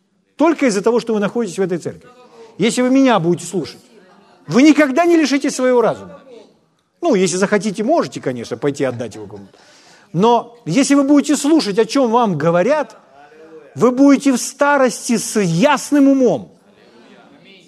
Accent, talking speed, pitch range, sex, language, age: native, 155 wpm, 180-245 Hz, male, Ukrainian, 40-59